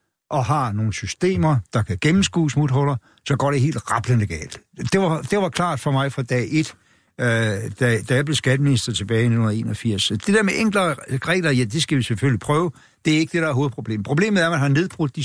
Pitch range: 125-165 Hz